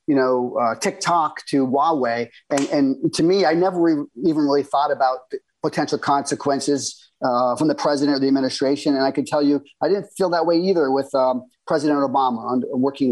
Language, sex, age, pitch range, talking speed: English, male, 30-49, 135-165 Hz, 195 wpm